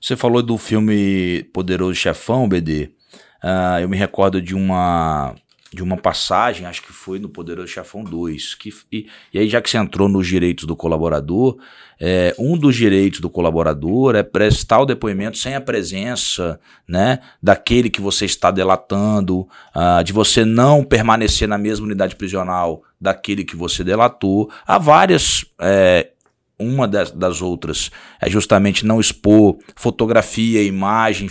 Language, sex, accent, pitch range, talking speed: Portuguese, male, Brazilian, 90-110 Hz, 140 wpm